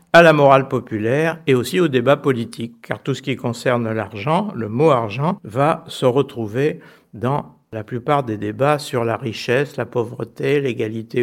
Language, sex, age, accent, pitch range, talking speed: French, male, 60-79, French, 115-150 Hz, 170 wpm